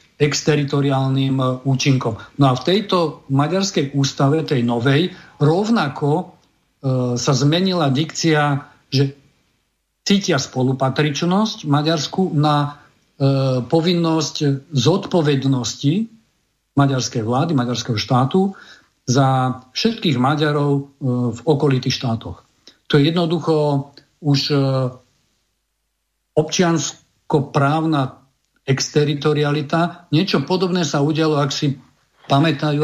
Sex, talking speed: male, 80 wpm